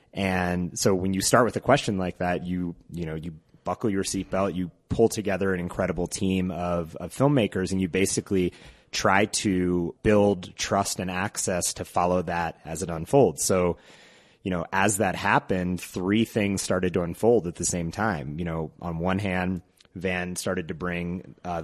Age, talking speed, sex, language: 30-49, 185 wpm, male, English